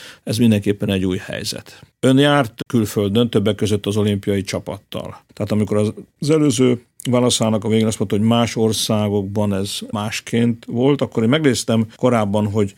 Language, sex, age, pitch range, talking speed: Hungarian, male, 50-69, 105-120 Hz, 155 wpm